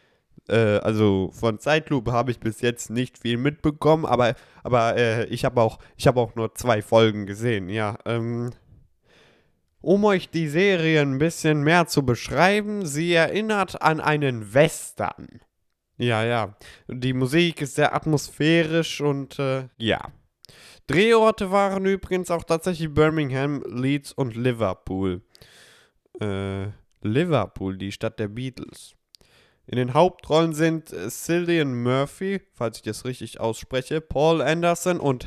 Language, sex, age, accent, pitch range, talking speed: German, male, 20-39, German, 110-155 Hz, 130 wpm